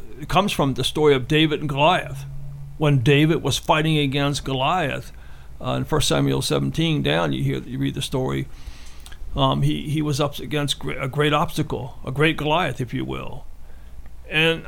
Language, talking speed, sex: English, 175 wpm, male